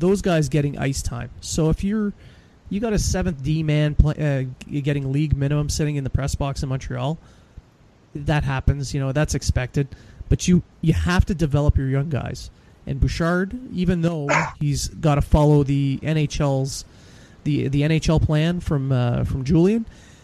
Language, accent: English, American